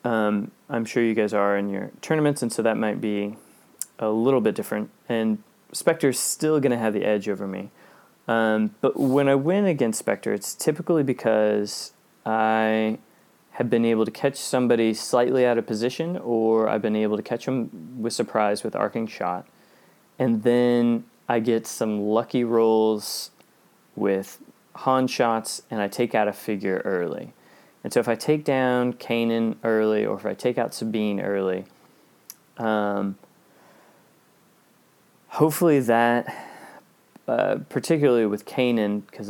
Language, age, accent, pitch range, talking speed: English, 20-39, American, 105-125 Hz, 155 wpm